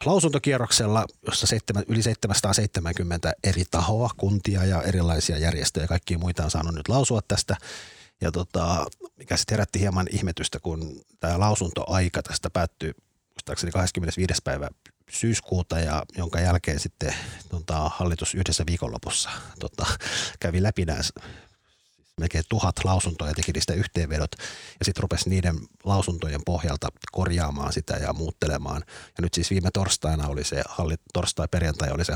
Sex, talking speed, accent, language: male, 130 wpm, native, Finnish